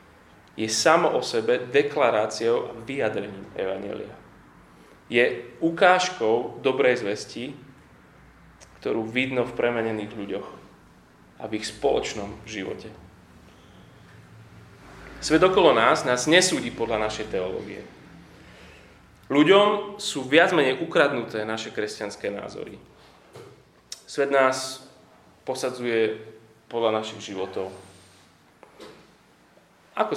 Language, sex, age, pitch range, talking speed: Slovak, male, 30-49, 105-140 Hz, 90 wpm